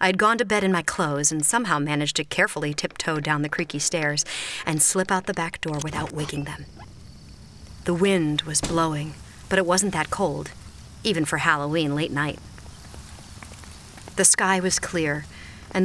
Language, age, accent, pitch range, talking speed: English, 40-59, American, 145-180 Hz, 175 wpm